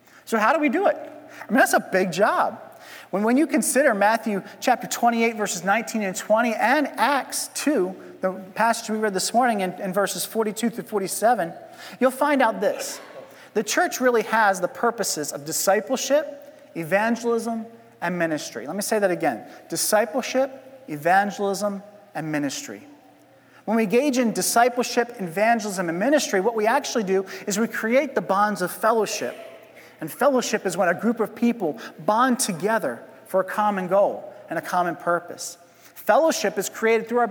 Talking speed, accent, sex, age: 165 wpm, American, male, 40-59